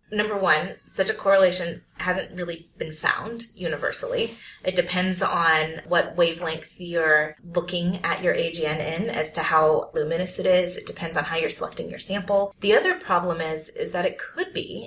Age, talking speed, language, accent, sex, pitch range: 20-39, 180 wpm, English, American, female, 170-225 Hz